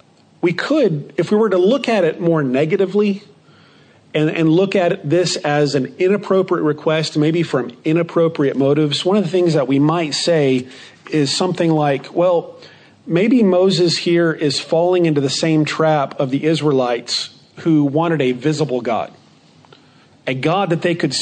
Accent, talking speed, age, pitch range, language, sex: American, 165 wpm, 40-59, 140-175 Hz, English, male